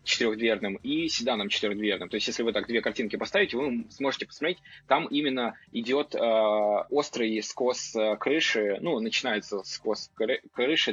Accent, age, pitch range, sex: native, 20-39, 105-135 Hz, male